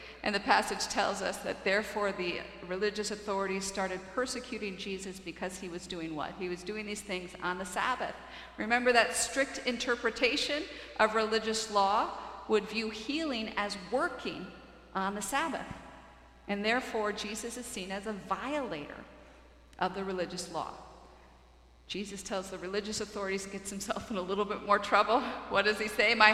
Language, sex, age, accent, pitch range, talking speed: English, female, 50-69, American, 205-275 Hz, 160 wpm